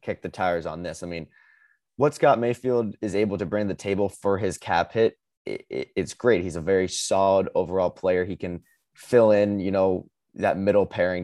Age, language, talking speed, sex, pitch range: 20-39, English, 215 wpm, male, 90-105 Hz